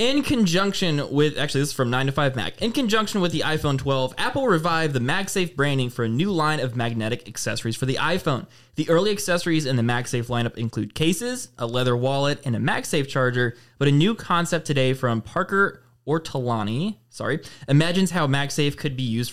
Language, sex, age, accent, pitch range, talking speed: English, male, 20-39, American, 120-155 Hz, 185 wpm